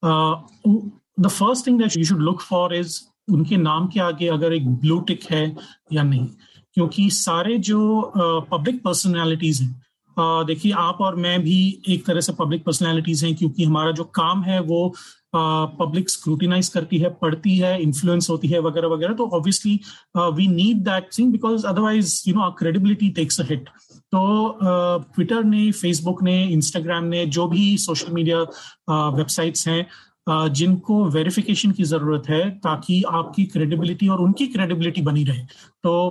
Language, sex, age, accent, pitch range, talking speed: Hindi, male, 30-49, native, 165-190 Hz, 160 wpm